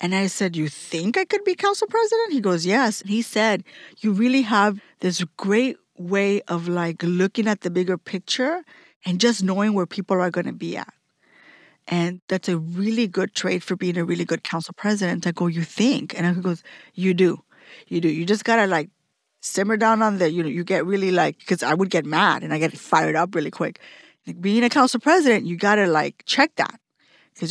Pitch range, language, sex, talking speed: 175-220 Hz, English, female, 220 wpm